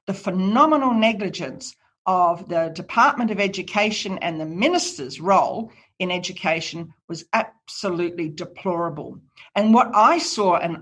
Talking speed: 120 wpm